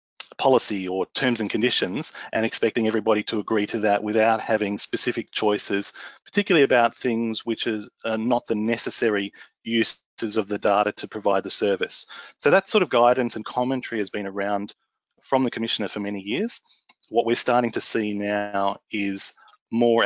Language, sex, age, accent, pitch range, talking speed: English, male, 30-49, Australian, 100-115 Hz, 170 wpm